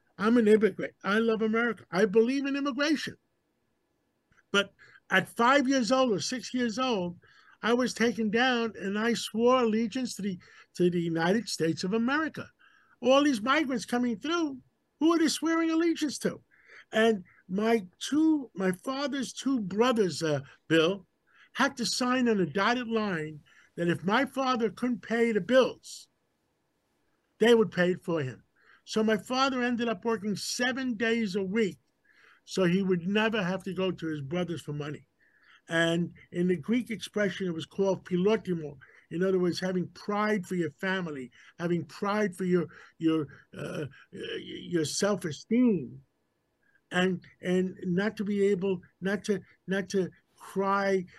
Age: 50-69